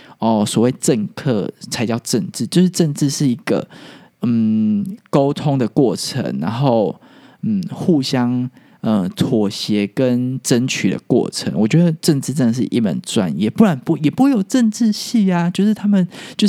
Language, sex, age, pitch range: Chinese, male, 20-39, 120-185 Hz